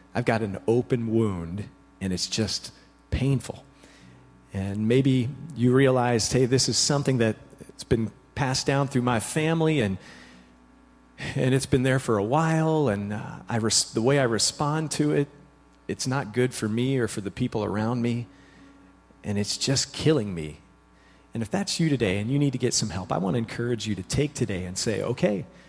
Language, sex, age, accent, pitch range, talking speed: English, male, 40-59, American, 105-150 Hz, 190 wpm